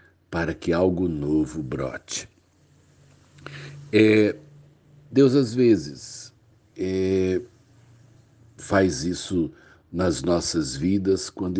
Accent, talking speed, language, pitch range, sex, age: Brazilian, 70 wpm, Portuguese, 85-110 Hz, male, 60-79